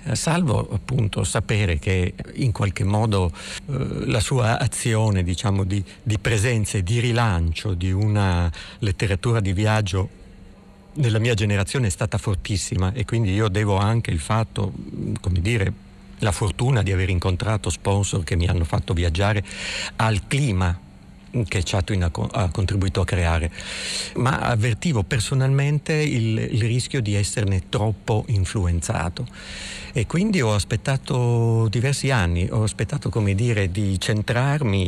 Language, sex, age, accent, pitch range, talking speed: Italian, male, 50-69, native, 95-115 Hz, 135 wpm